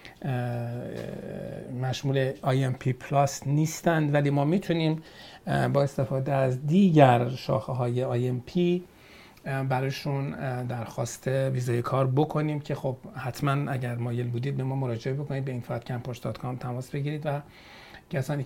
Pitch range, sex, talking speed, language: 125-140 Hz, male, 120 wpm, Persian